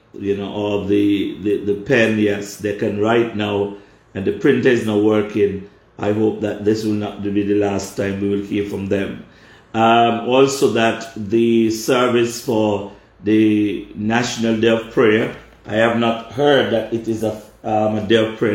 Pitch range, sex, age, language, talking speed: 105-115 Hz, male, 50-69, English, 180 wpm